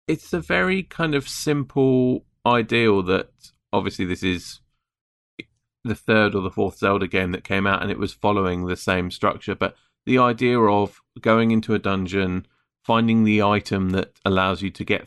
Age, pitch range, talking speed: 30-49, 90-110 Hz, 175 wpm